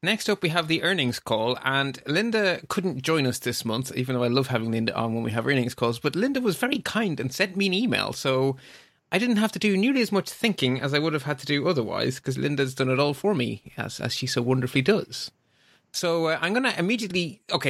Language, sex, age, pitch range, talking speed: English, male, 30-49, 120-170 Hz, 250 wpm